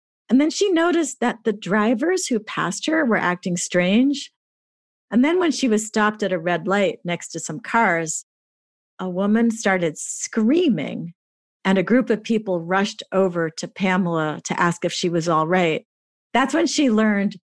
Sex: female